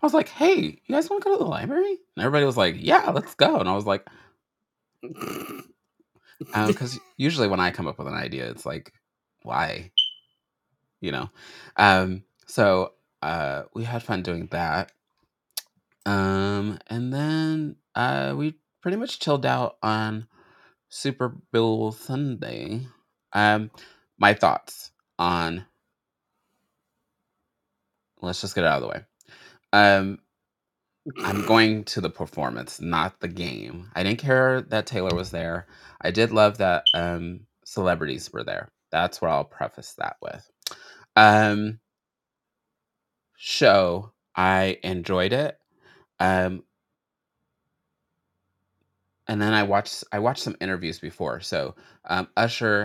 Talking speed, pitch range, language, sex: 135 wpm, 95-125 Hz, English, male